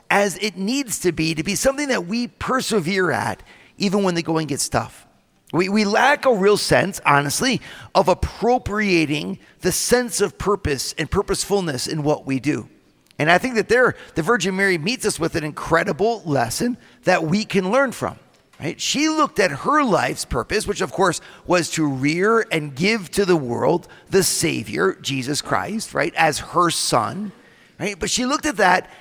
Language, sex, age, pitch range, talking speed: English, male, 40-59, 165-225 Hz, 180 wpm